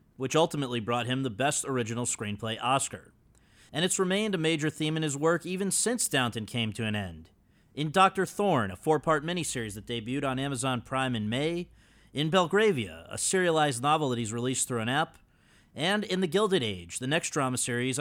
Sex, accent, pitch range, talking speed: male, American, 115-160 Hz, 195 wpm